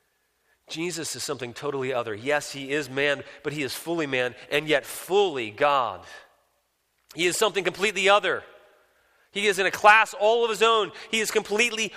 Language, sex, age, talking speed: English, male, 30-49, 175 wpm